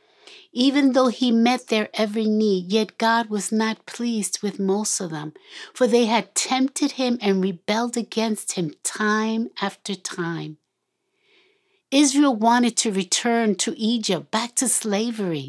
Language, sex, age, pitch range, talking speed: English, female, 60-79, 185-255 Hz, 145 wpm